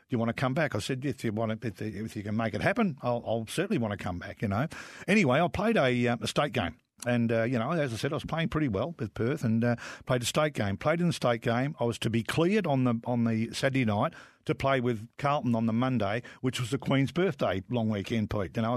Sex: male